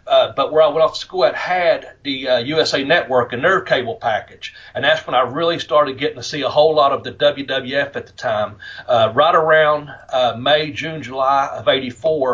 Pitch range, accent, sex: 125-155 Hz, American, male